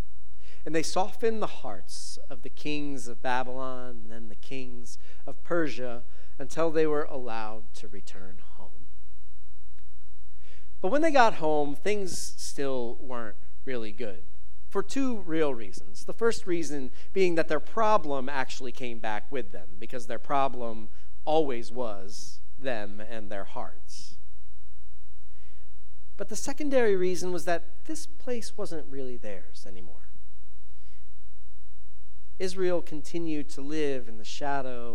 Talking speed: 130 wpm